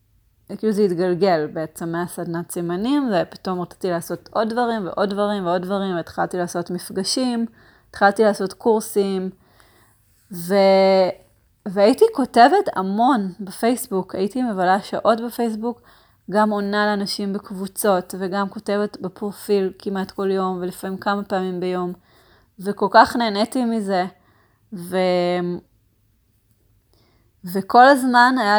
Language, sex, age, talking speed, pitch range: Hebrew, female, 30-49, 110 wpm, 180-215 Hz